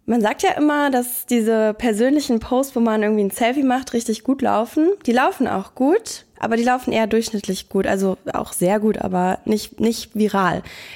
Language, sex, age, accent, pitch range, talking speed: German, female, 20-39, German, 195-240 Hz, 190 wpm